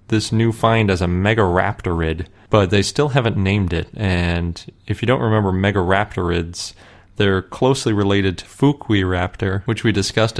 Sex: male